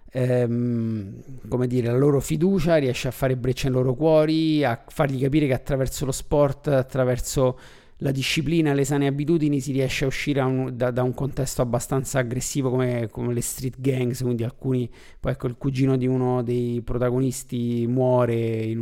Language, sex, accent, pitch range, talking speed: Italian, male, native, 125-145 Hz, 180 wpm